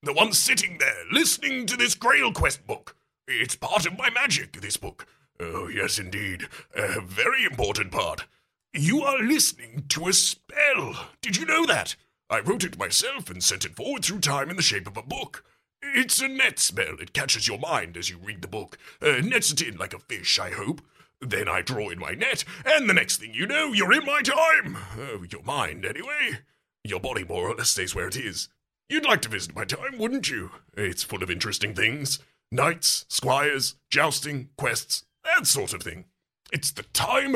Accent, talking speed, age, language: British, 200 wpm, 40-59, English